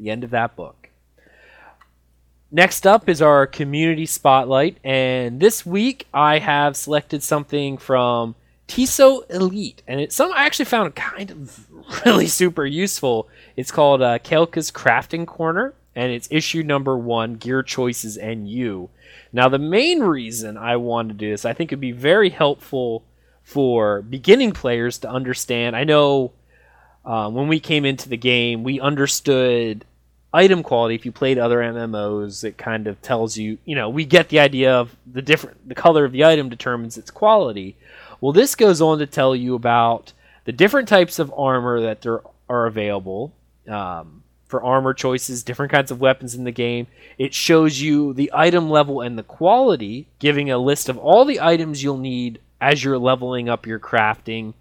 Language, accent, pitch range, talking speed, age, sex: English, American, 115-150 Hz, 175 wpm, 20-39, male